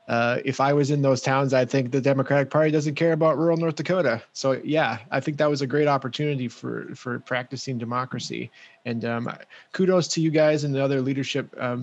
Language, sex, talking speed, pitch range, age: English, male, 215 wpm, 125-150 Hz, 20-39